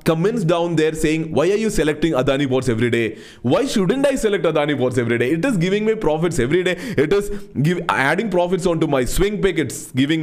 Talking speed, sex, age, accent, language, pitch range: 215 wpm, male, 30-49, Indian, English, 140-205 Hz